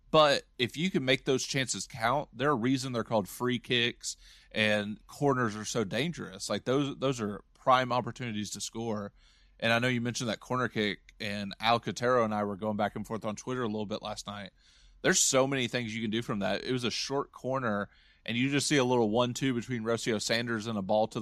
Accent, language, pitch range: American, English, 105-125 Hz